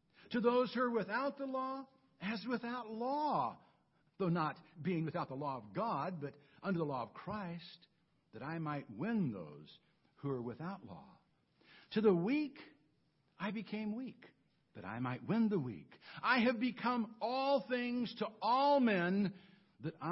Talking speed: 160 wpm